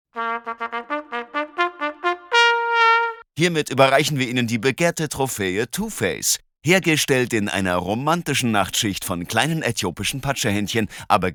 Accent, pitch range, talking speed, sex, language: German, 95-135 Hz, 95 wpm, male, German